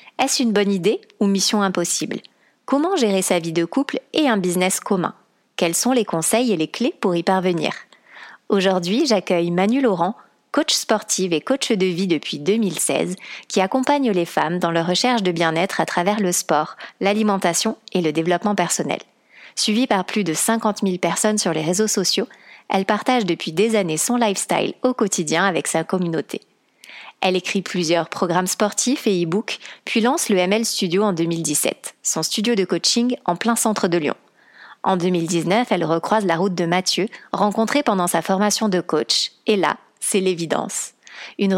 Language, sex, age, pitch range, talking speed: French, female, 30-49, 175-220 Hz, 175 wpm